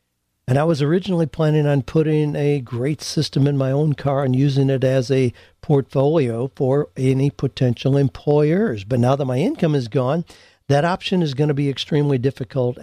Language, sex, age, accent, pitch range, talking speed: English, male, 60-79, American, 120-150 Hz, 180 wpm